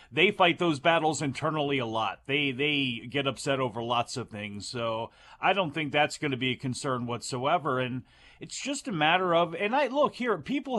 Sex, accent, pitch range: male, American, 125-175 Hz